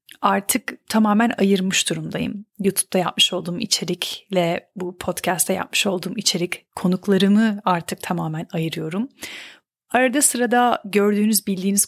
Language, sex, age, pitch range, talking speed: Turkish, female, 30-49, 185-235 Hz, 105 wpm